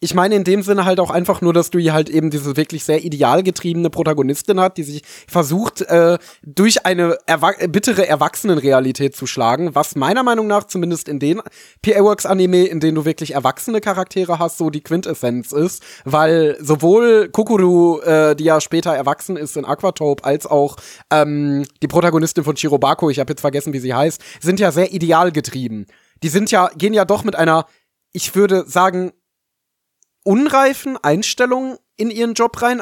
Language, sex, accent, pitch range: German, male, German, 150-195 Hz